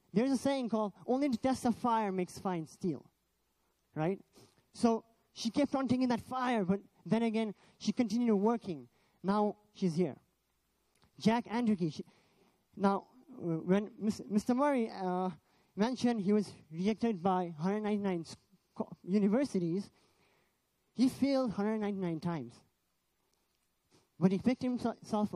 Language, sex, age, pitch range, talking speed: English, male, 20-39, 175-230 Hz, 120 wpm